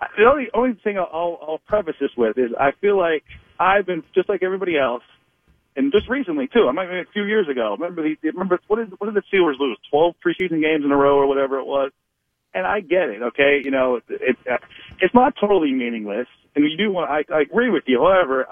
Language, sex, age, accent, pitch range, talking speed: English, male, 40-59, American, 140-185 Hz, 235 wpm